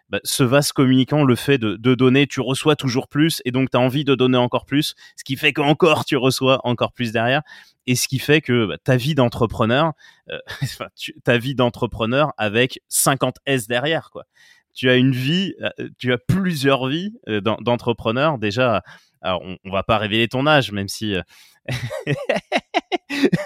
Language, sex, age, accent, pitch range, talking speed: French, male, 20-39, French, 115-145 Hz, 180 wpm